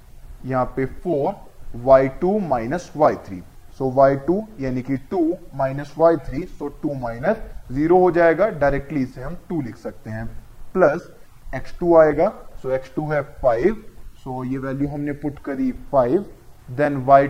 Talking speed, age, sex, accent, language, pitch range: 160 wpm, 20-39, male, native, Hindi, 130-165 Hz